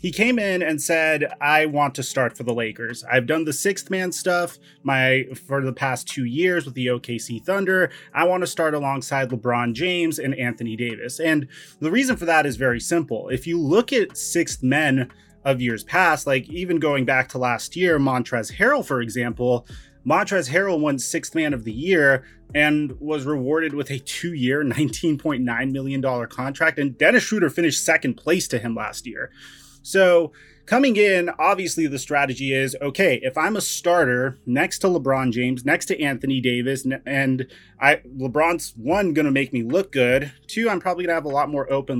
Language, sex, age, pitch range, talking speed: English, male, 30-49, 130-165 Hz, 190 wpm